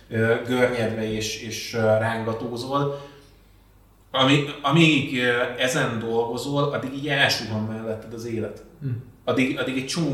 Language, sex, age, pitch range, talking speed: Hungarian, male, 20-39, 110-125 Hz, 105 wpm